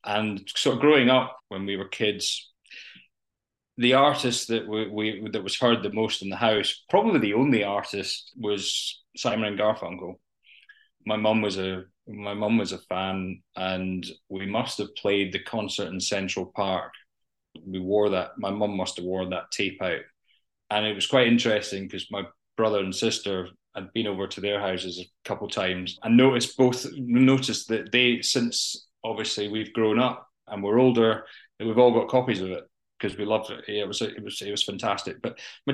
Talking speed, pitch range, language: 190 wpm, 100-120 Hz, English